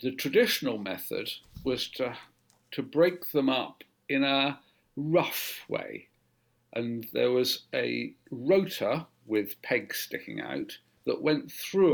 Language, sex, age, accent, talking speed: English, male, 50-69, British, 125 wpm